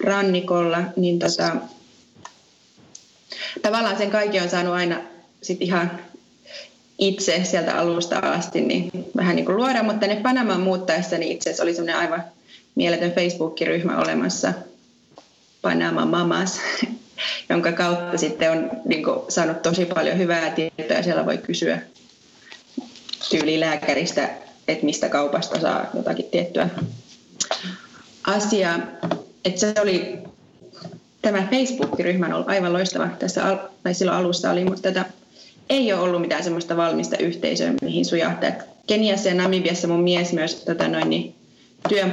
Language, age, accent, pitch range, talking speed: Finnish, 30-49, native, 170-195 Hz, 130 wpm